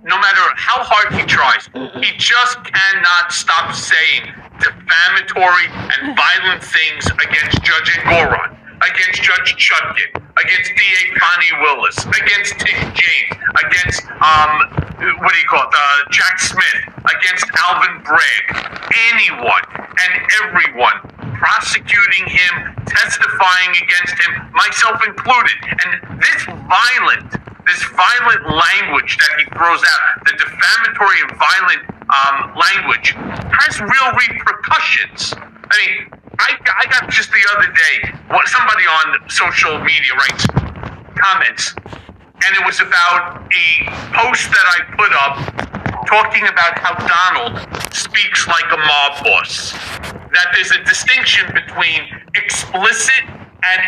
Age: 50-69